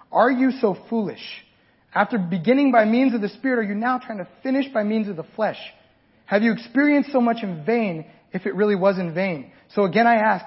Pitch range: 180-245 Hz